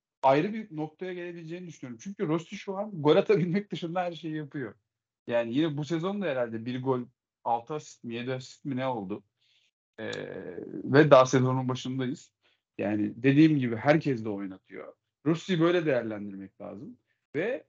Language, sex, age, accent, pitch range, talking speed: Turkish, male, 40-59, native, 130-185 Hz, 155 wpm